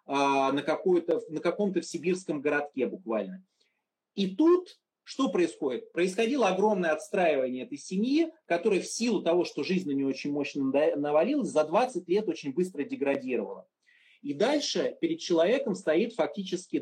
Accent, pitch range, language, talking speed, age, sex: native, 150-230 Hz, Russian, 140 wpm, 30-49, male